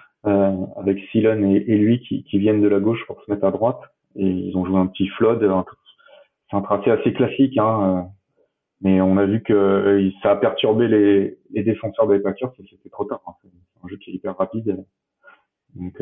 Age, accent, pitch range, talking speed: 30-49, French, 95-115 Hz, 215 wpm